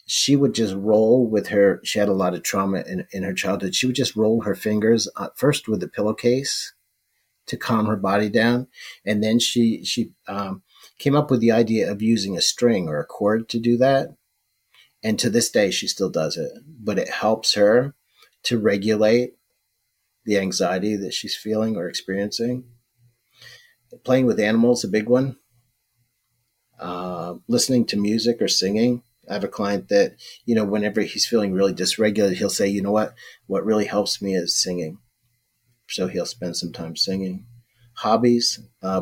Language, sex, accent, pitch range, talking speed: English, male, American, 100-120 Hz, 180 wpm